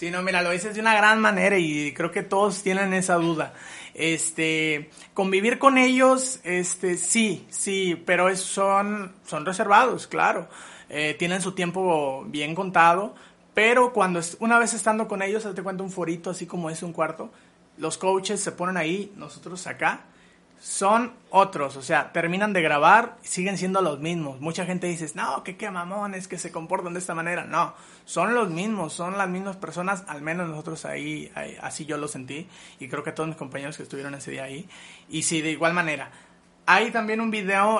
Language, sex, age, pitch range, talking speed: Spanish, male, 30-49, 160-195 Hz, 190 wpm